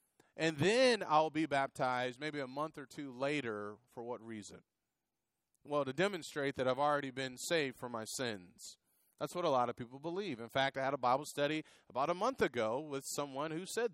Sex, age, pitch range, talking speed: male, 30-49, 135-180 Hz, 200 wpm